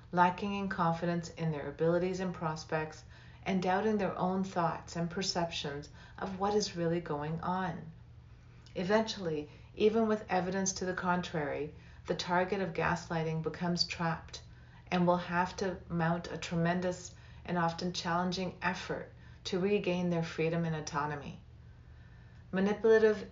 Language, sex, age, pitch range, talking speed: English, female, 40-59, 160-190 Hz, 135 wpm